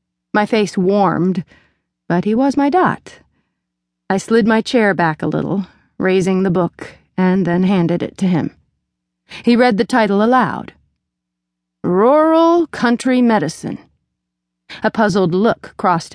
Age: 30-49